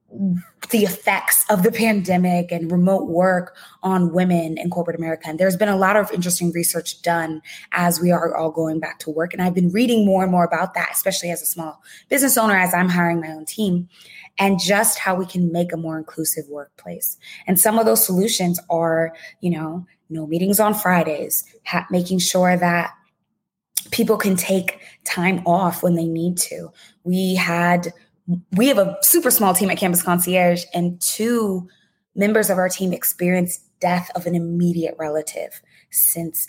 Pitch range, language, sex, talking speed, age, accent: 170-195 Hz, English, female, 180 wpm, 20-39, American